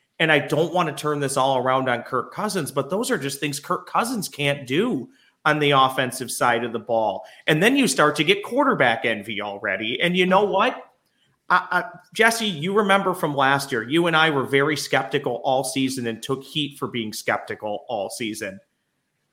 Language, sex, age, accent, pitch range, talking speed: English, male, 40-59, American, 130-175 Hz, 195 wpm